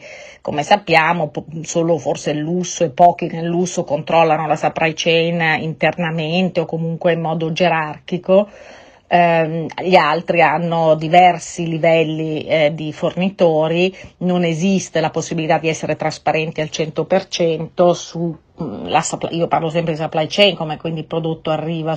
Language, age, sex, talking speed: Italian, 40-59, female, 135 wpm